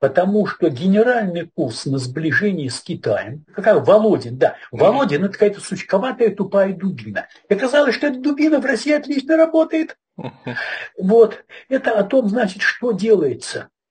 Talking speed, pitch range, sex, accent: 145 wpm, 165-220 Hz, male, native